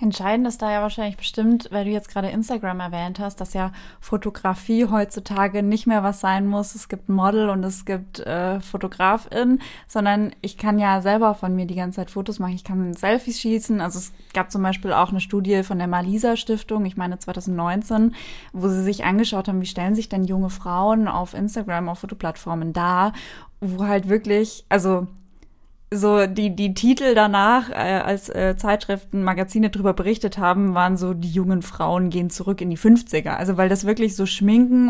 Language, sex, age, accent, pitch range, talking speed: German, female, 20-39, German, 185-215 Hz, 190 wpm